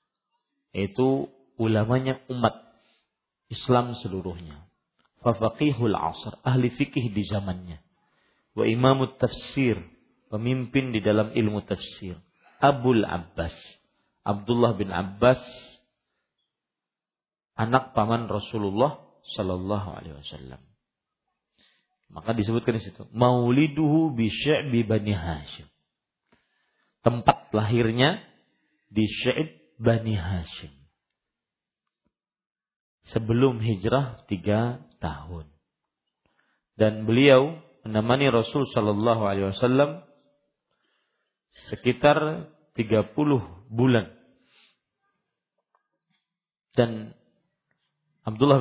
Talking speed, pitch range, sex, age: 75 wpm, 105-130 Hz, male, 50-69